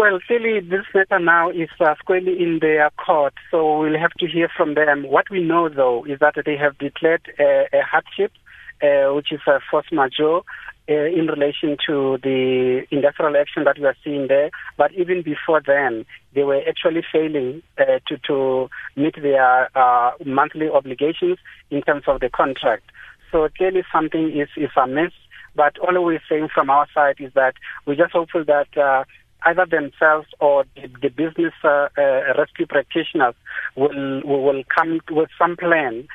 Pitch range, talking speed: 140-165 Hz, 175 wpm